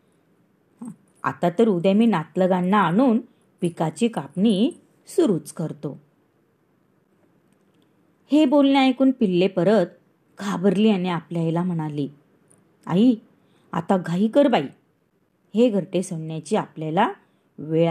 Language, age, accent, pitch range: Marathi, 30-49, native, 160-210 Hz